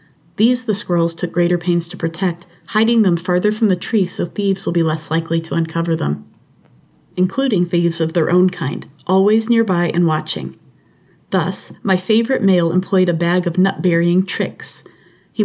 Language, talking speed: English, 170 wpm